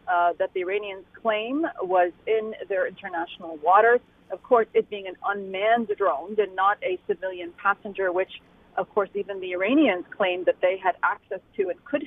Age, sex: 40-59, female